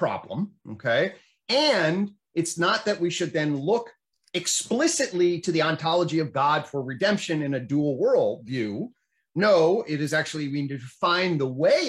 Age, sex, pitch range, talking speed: 30-49, male, 145-190 Hz, 165 wpm